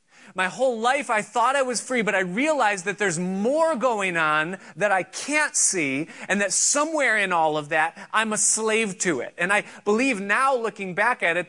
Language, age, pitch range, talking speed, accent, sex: English, 30-49, 170-230 Hz, 210 wpm, American, male